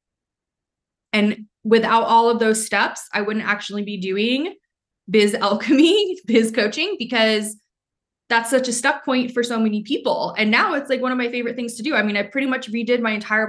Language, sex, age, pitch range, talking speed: English, female, 20-39, 200-250 Hz, 195 wpm